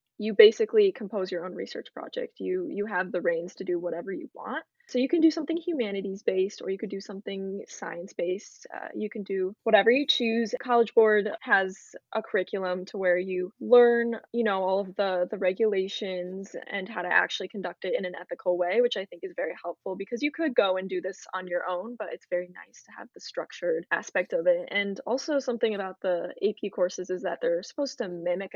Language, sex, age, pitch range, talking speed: English, female, 10-29, 185-250 Hz, 220 wpm